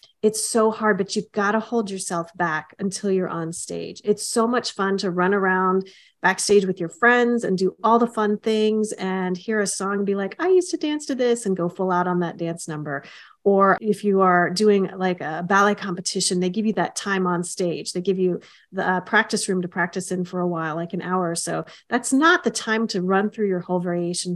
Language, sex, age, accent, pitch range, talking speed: English, female, 30-49, American, 180-215 Hz, 235 wpm